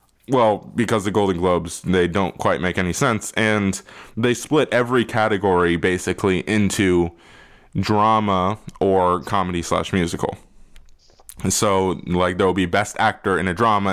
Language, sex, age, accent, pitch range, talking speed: English, male, 20-39, American, 90-130 Hz, 140 wpm